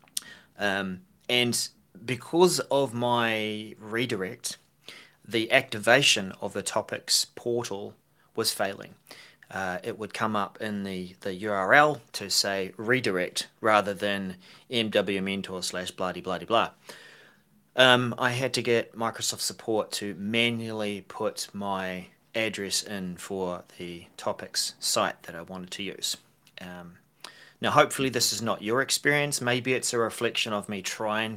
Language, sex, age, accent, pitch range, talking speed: English, male, 30-49, Australian, 95-120 Hz, 130 wpm